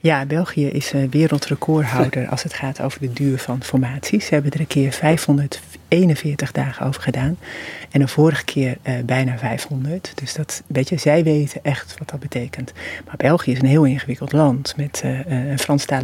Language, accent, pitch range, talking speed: Dutch, Dutch, 130-160 Hz, 185 wpm